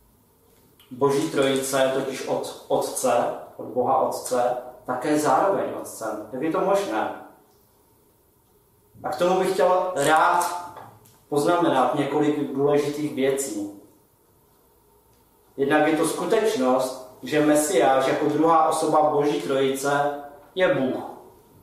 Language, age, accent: Czech, 30-49, native